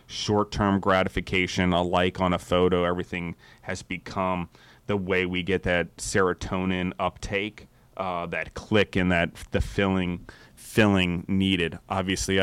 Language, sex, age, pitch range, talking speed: English, male, 30-49, 85-100 Hz, 130 wpm